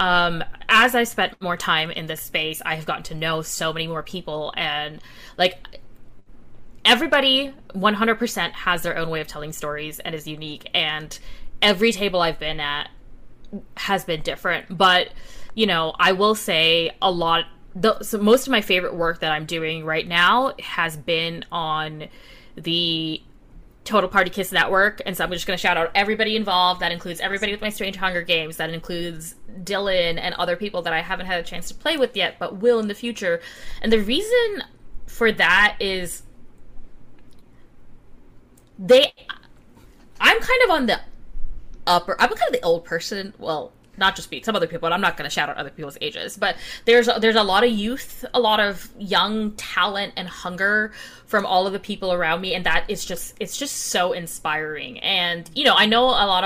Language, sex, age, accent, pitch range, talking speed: English, female, 20-39, American, 160-210 Hz, 190 wpm